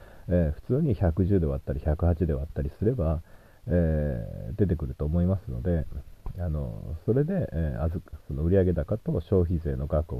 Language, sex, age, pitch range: Japanese, male, 40-59, 80-105 Hz